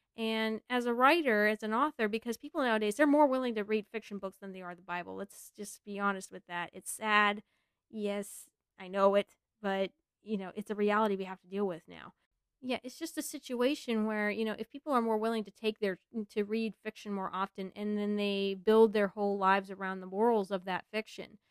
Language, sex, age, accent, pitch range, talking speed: English, female, 20-39, American, 195-240 Hz, 225 wpm